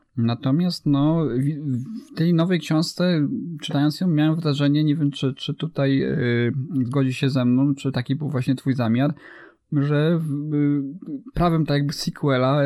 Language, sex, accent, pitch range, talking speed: Polish, male, native, 120-150 Hz, 155 wpm